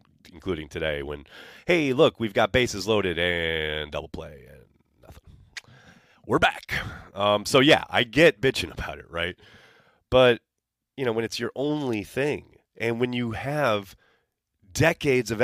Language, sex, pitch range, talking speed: English, male, 90-145 Hz, 150 wpm